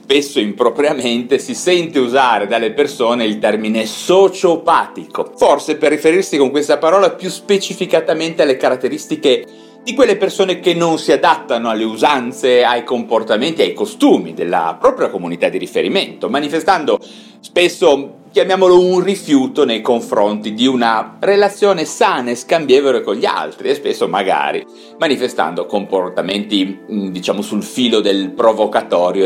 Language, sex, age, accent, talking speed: Italian, male, 40-59, native, 130 wpm